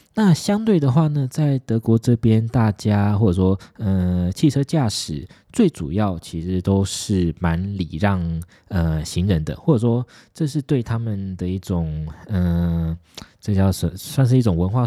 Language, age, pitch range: Chinese, 20-39, 85-110 Hz